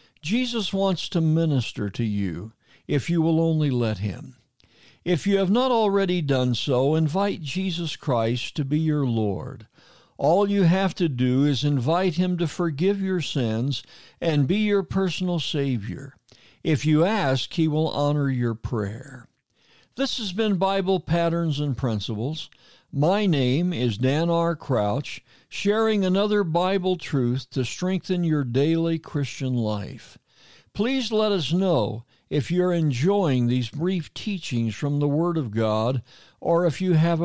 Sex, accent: male, American